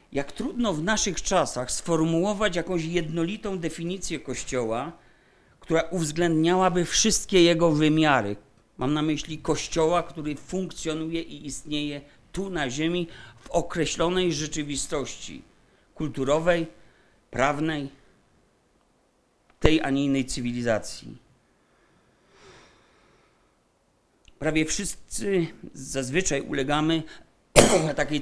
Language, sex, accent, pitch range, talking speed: Polish, male, native, 130-170 Hz, 85 wpm